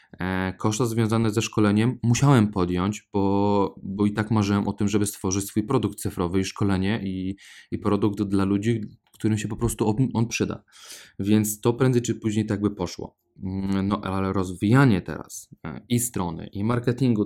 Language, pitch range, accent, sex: Polish, 95-110 Hz, native, male